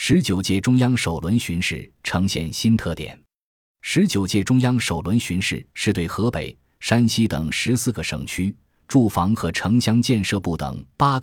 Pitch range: 85-115 Hz